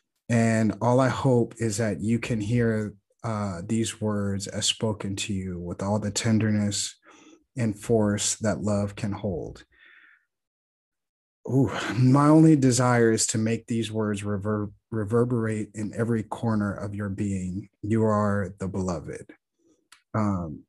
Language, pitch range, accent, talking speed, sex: English, 105-120 Hz, American, 135 wpm, male